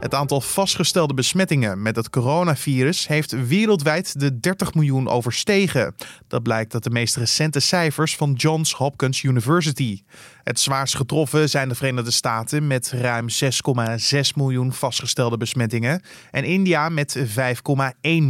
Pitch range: 125-155 Hz